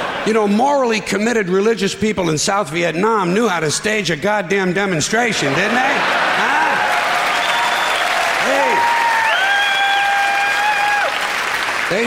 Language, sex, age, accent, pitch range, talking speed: English, male, 60-79, American, 185-270 Hz, 95 wpm